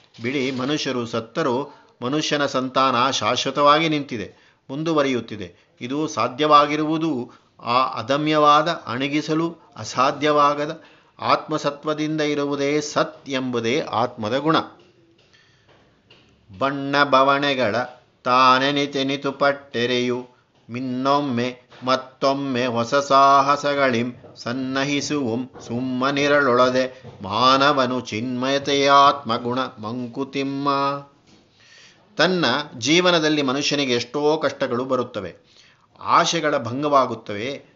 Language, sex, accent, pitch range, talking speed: Kannada, male, native, 125-150 Hz, 65 wpm